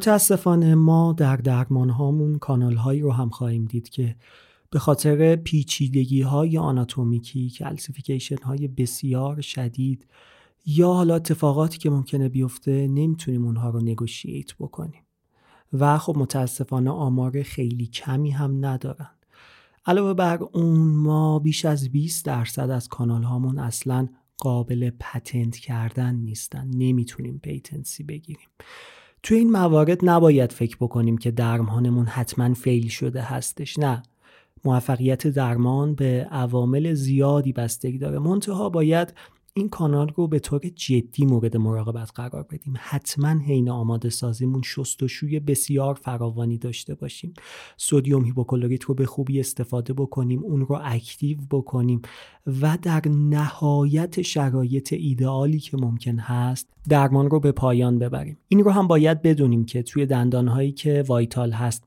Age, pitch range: 30-49, 125-150 Hz